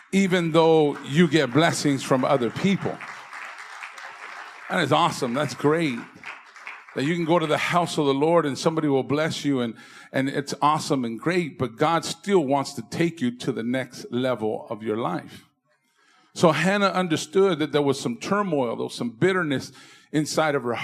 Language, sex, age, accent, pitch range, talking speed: English, male, 50-69, American, 140-170 Hz, 180 wpm